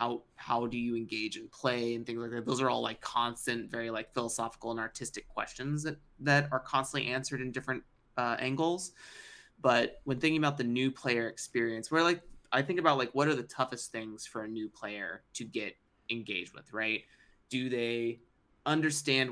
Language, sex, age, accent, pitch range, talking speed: English, male, 20-39, American, 115-135 Hz, 195 wpm